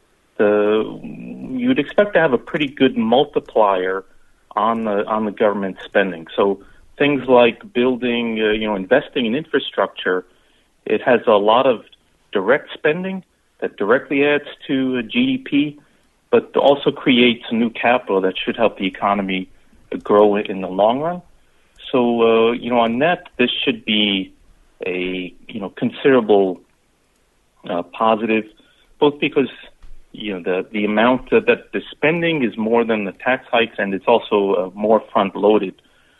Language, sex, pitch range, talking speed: English, male, 95-125 Hz, 155 wpm